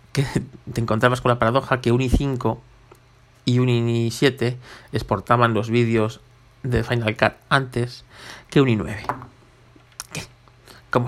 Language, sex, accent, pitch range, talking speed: Spanish, male, Spanish, 115-135 Hz, 130 wpm